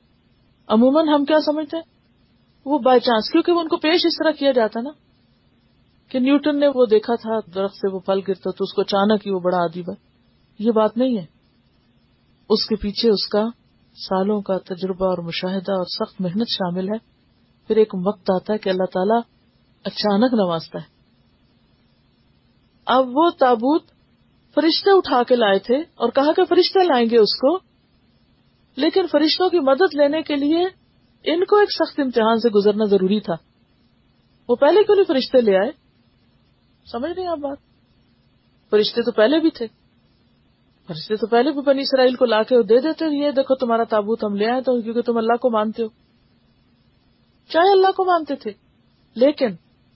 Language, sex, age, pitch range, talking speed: Urdu, female, 40-59, 195-285 Hz, 175 wpm